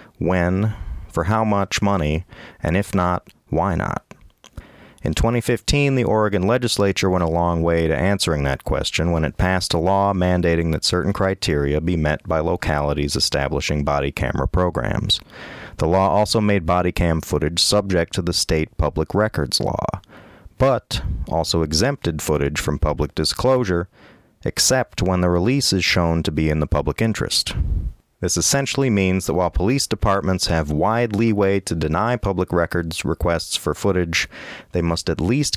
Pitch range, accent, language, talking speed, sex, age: 80-100 Hz, American, English, 160 wpm, male, 30-49